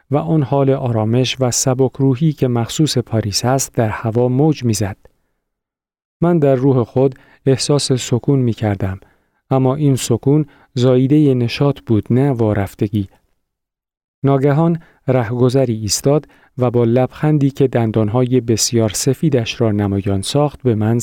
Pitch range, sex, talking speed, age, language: 110-140 Hz, male, 130 wpm, 40-59, Persian